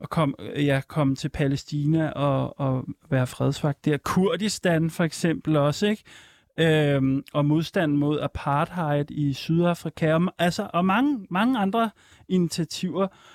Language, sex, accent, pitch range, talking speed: Danish, male, native, 145-180 Hz, 135 wpm